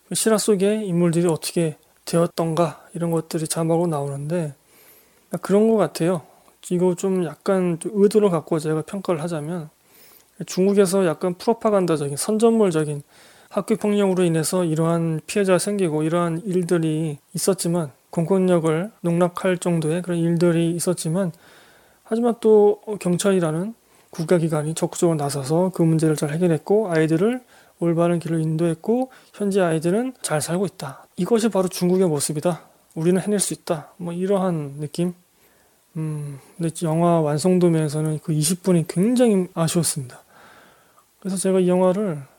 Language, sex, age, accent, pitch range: Korean, male, 20-39, native, 160-190 Hz